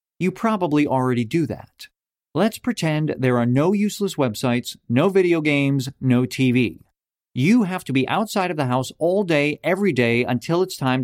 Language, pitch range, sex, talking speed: English, 125-180 Hz, male, 175 wpm